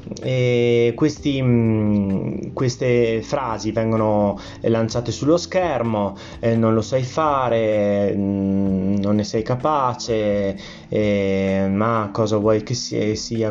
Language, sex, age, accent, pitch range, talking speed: Italian, male, 20-39, native, 100-115 Hz, 95 wpm